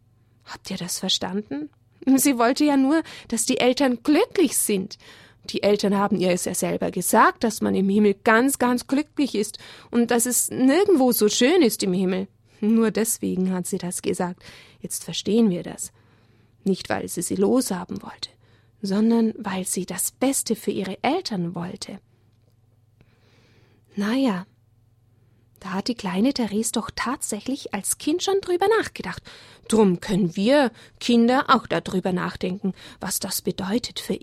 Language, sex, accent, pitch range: German, female, German, 185-245 Hz